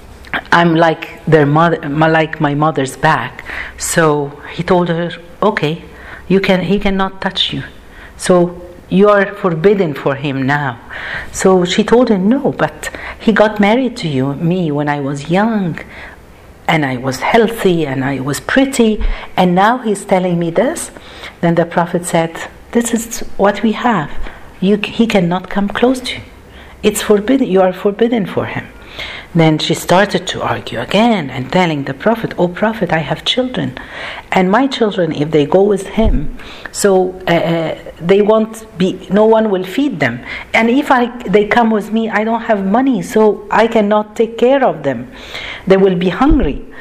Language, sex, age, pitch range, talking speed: Arabic, female, 50-69, 160-215 Hz, 170 wpm